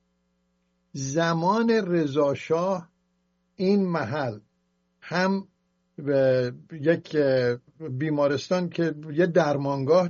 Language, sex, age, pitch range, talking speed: English, male, 60-79, 120-175 Hz, 65 wpm